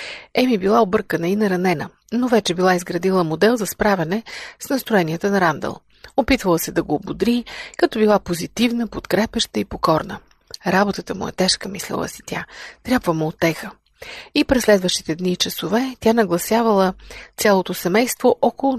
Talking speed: 155 wpm